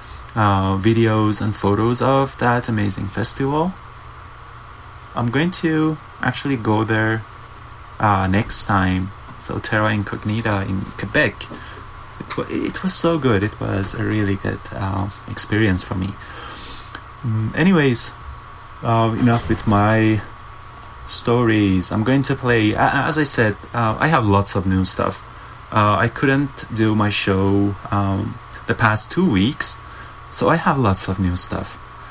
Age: 30-49